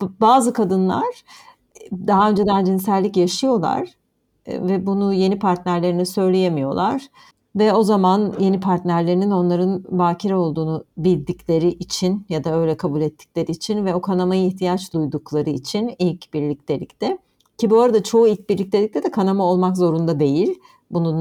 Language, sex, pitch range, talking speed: Turkish, female, 170-210 Hz, 135 wpm